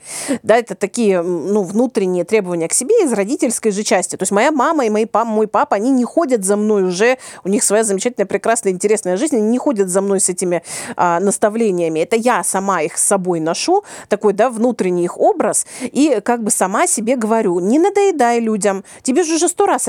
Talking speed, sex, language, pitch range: 200 wpm, female, Russian, 190-250 Hz